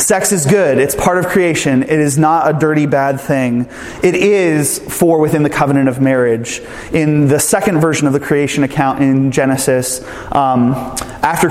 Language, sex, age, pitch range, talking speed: English, male, 30-49, 130-155 Hz, 175 wpm